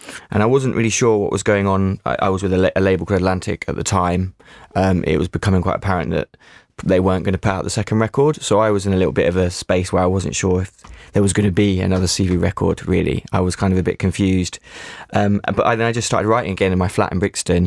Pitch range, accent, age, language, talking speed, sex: 90-105 Hz, British, 20-39, English, 275 wpm, male